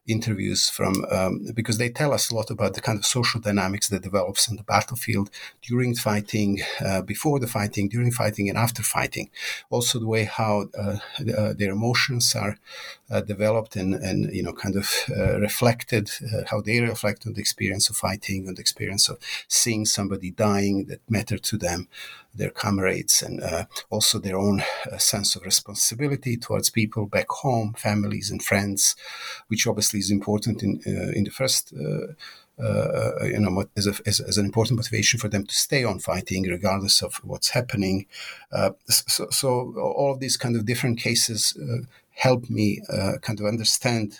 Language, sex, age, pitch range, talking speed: English, male, 50-69, 100-120 Hz, 185 wpm